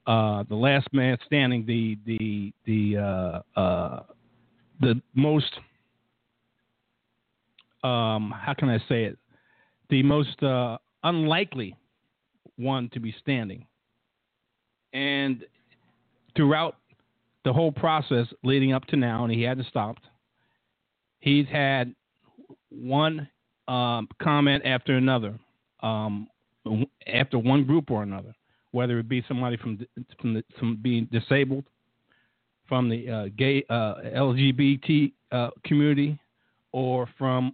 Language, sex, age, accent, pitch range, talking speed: English, male, 50-69, American, 115-140 Hz, 115 wpm